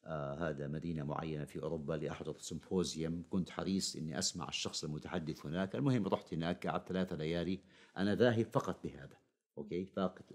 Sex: male